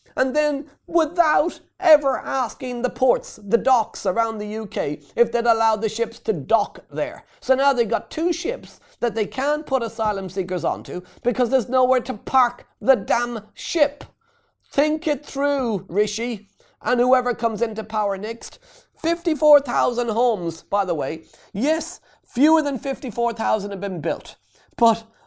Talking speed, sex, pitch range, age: 150 wpm, male, 185-250 Hz, 30-49